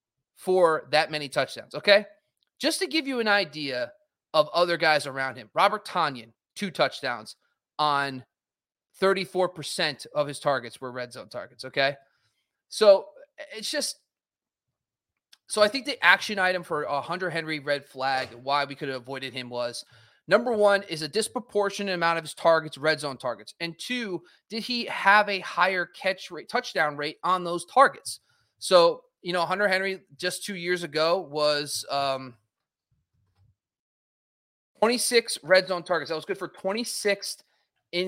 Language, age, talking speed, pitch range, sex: English, 30-49, 160 wpm, 140-200 Hz, male